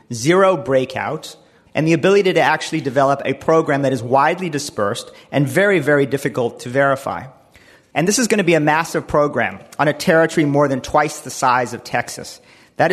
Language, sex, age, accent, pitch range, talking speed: English, male, 40-59, American, 125-165 Hz, 185 wpm